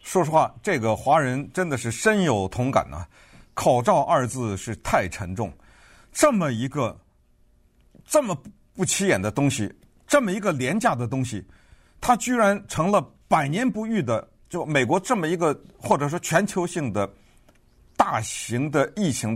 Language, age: Chinese, 50-69